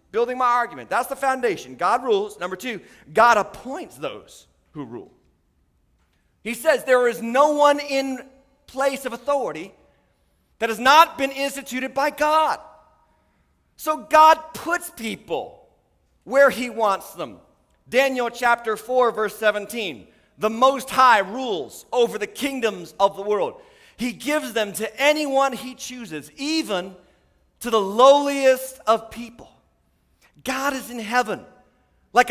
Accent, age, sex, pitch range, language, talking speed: American, 40-59, male, 220-280 Hz, English, 135 wpm